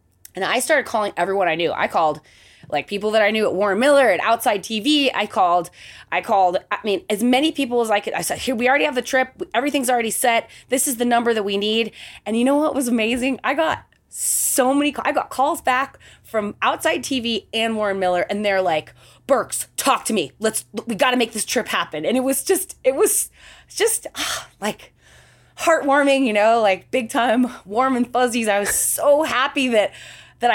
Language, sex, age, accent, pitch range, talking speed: English, female, 20-39, American, 195-260 Hz, 210 wpm